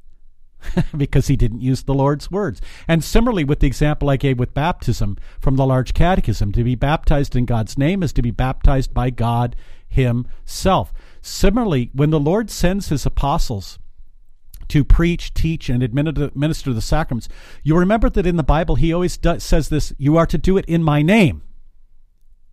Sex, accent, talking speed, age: male, American, 175 wpm, 50-69